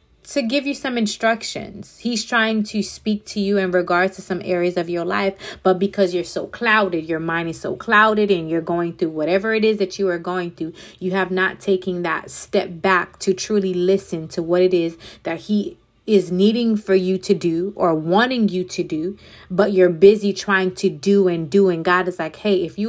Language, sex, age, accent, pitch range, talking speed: English, female, 30-49, American, 180-205 Hz, 220 wpm